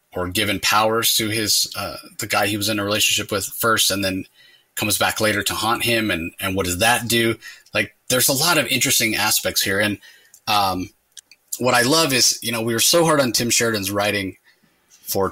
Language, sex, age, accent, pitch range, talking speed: English, male, 30-49, American, 100-125 Hz, 210 wpm